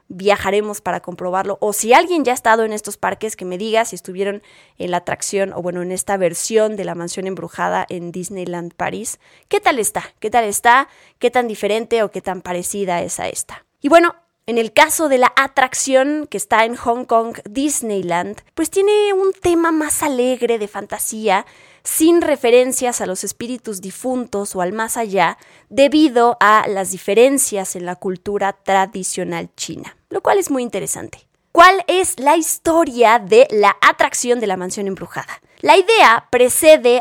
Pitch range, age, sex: 195-265 Hz, 20-39, female